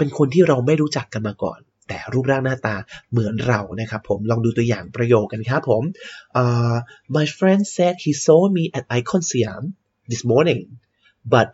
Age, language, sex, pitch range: 30-49, Thai, male, 110-160 Hz